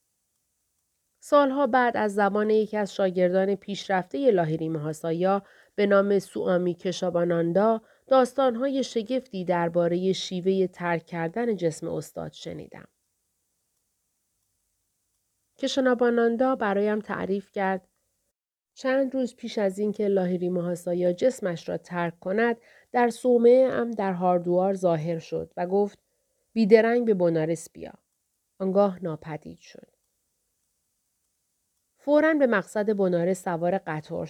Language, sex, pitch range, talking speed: Persian, female, 170-225 Hz, 100 wpm